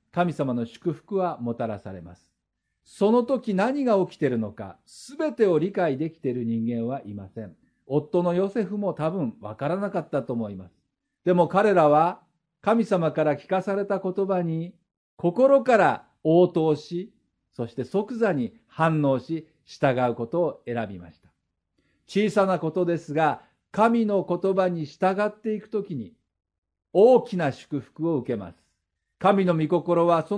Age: 50-69